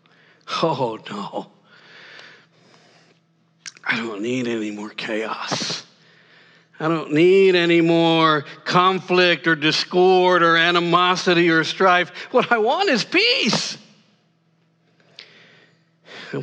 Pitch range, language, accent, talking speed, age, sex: 165-185 Hz, English, American, 95 wpm, 60-79, male